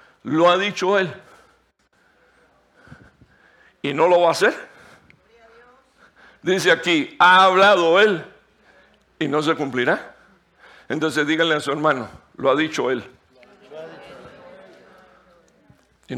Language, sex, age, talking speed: Spanish, male, 60-79, 110 wpm